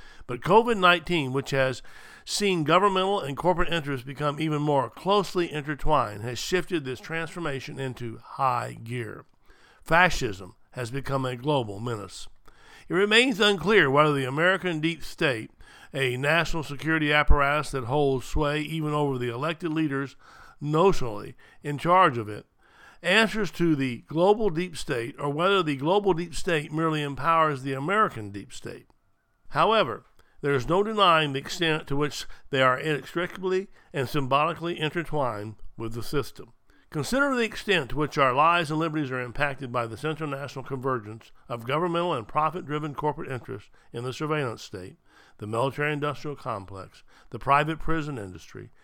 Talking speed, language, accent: 150 wpm, English, American